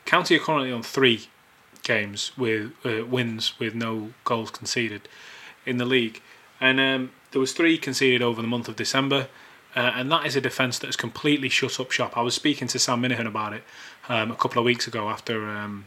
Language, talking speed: English, 210 wpm